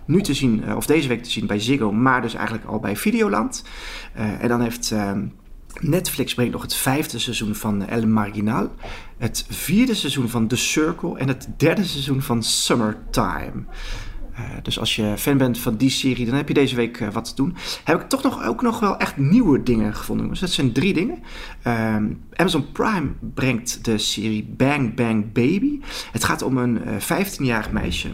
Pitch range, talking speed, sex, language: 110-160 Hz, 195 wpm, male, Dutch